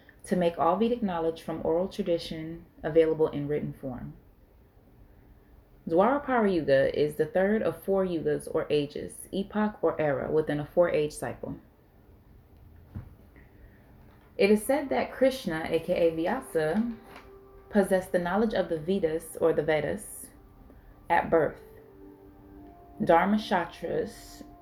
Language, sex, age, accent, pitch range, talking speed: English, female, 20-39, American, 150-200 Hz, 120 wpm